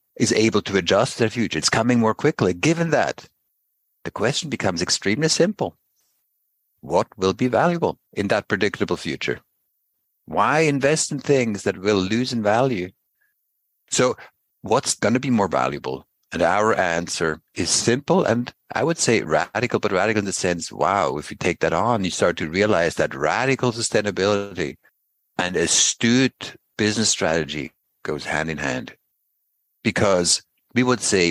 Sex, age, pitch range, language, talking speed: male, 60-79, 90-125 Hz, English, 155 wpm